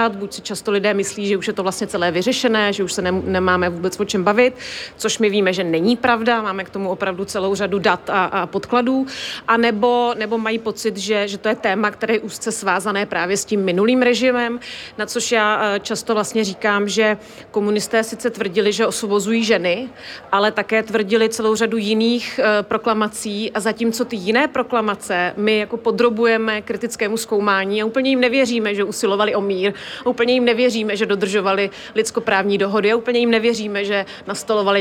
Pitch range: 205-235 Hz